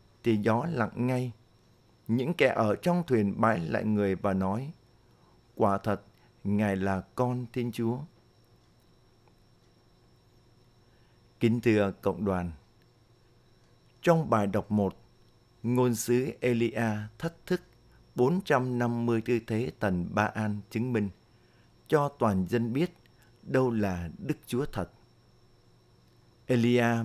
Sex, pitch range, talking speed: male, 105-120 Hz, 115 wpm